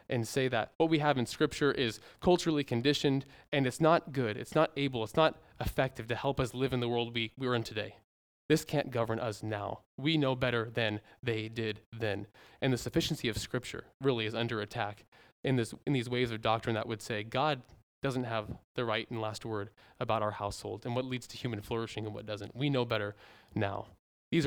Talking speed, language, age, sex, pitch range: 210 wpm, English, 20-39, male, 110-140 Hz